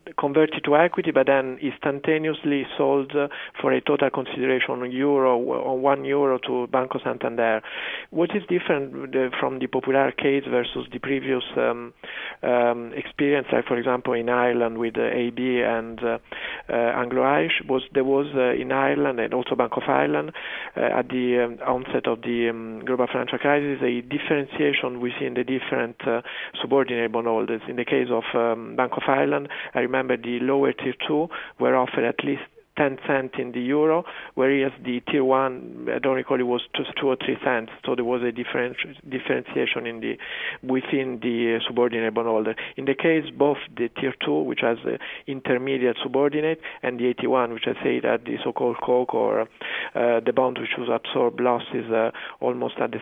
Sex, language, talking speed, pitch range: male, English, 180 wpm, 120-140 Hz